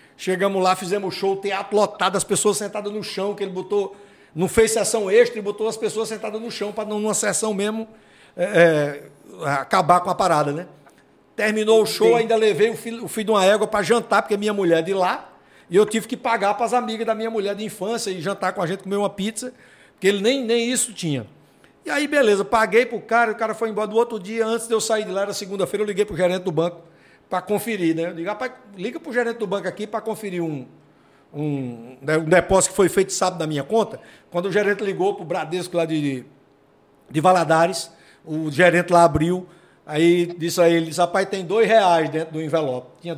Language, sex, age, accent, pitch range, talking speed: Portuguese, male, 60-79, Brazilian, 175-220 Hz, 230 wpm